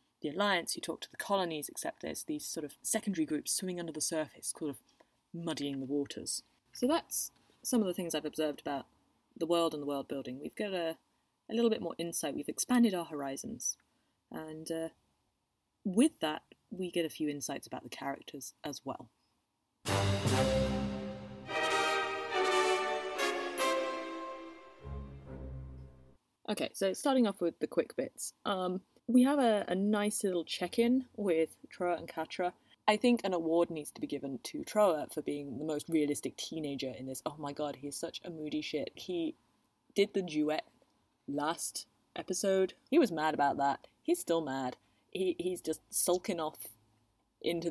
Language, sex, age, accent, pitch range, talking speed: English, female, 30-49, British, 130-185 Hz, 165 wpm